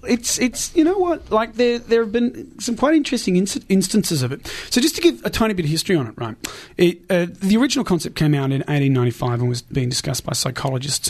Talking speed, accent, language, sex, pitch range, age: 240 wpm, Australian, English, male, 130-165 Hz, 30-49